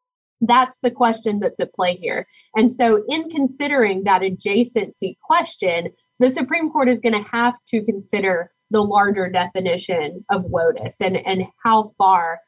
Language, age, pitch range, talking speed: English, 20-39, 185-240 Hz, 155 wpm